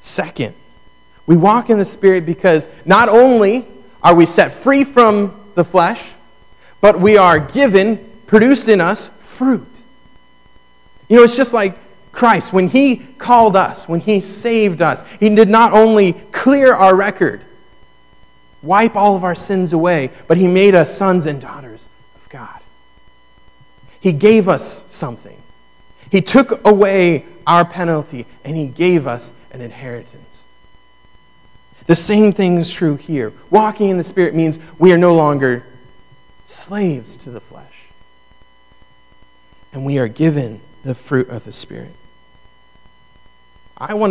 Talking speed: 145 wpm